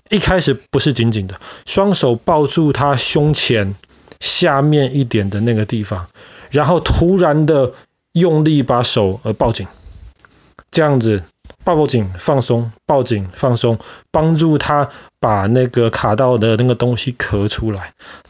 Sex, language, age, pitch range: male, Chinese, 20-39, 110-150 Hz